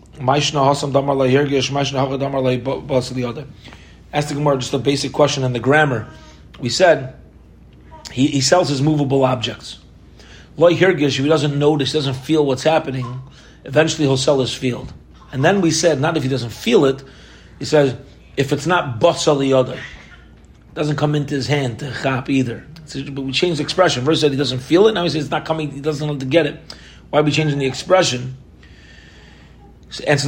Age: 30-49